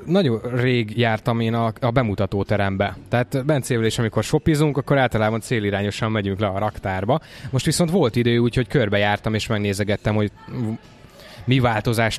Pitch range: 110-135 Hz